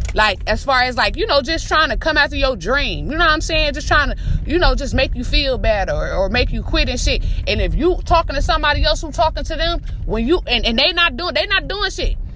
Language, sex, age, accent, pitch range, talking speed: English, female, 20-39, American, 255-330 Hz, 280 wpm